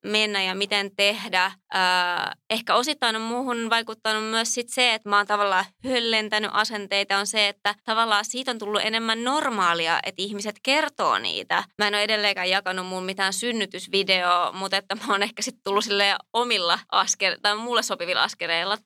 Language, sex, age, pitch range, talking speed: Finnish, female, 20-39, 190-220 Hz, 165 wpm